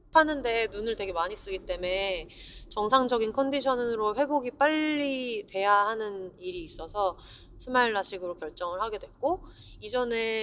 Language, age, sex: Korean, 30-49, female